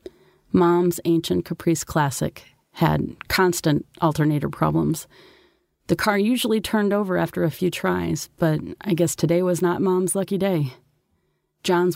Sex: female